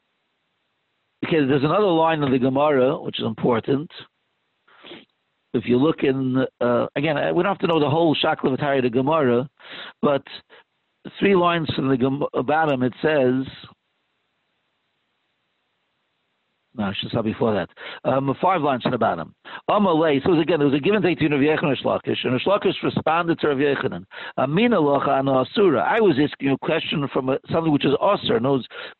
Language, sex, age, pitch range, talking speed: English, male, 50-69, 135-170 Hz, 155 wpm